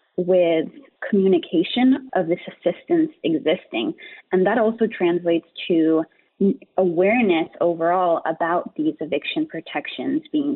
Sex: female